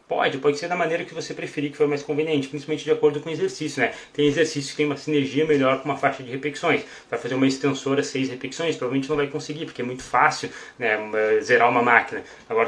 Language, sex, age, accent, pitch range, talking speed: Portuguese, male, 20-39, Brazilian, 135-155 Hz, 235 wpm